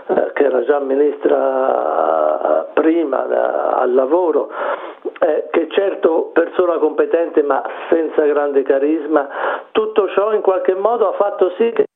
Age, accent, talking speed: 50-69, native, 130 wpm